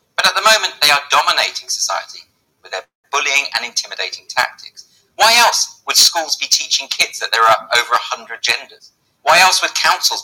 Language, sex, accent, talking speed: English, male, British, 180 wpm